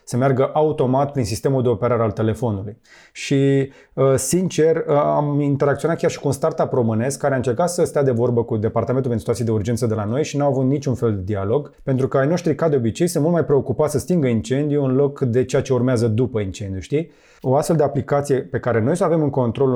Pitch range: 120-155 Hz